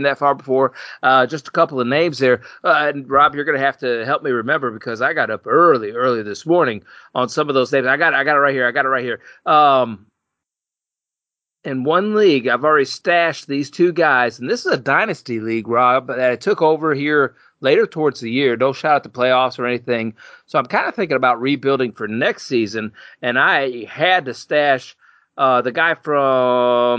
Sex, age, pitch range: male, 30-49, 125-150 Hz